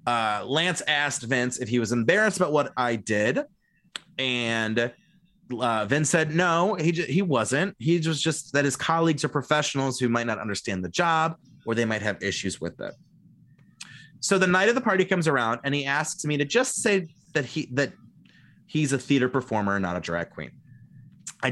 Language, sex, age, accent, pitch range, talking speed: English, male, 30-49, American, 120-170 Hz, 195 wpm